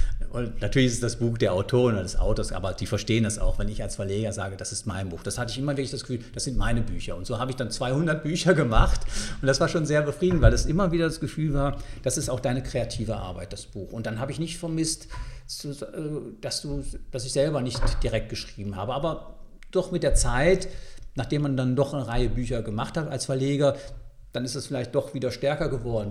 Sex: male